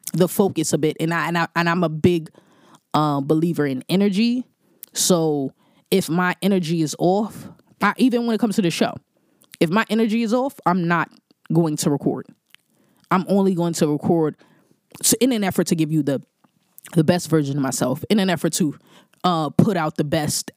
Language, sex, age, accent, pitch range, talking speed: English, female, 20-39, American, 155-200 Hz, 195 wpm